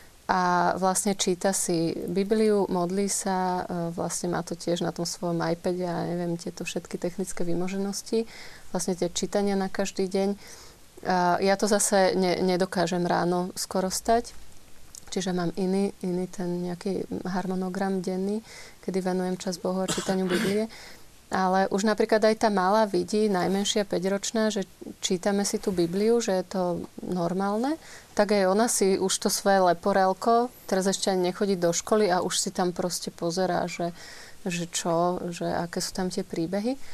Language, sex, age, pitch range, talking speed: Slovak, female, 30-49, 180-200 Hz, 160 wpm